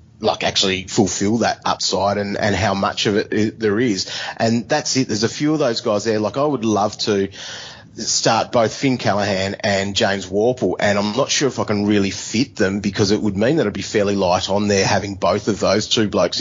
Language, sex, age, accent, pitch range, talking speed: English, male, 30-49, Australian, 100-115 Hz, 235 wpm